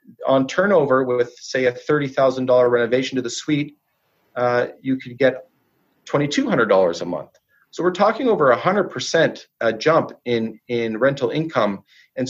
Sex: male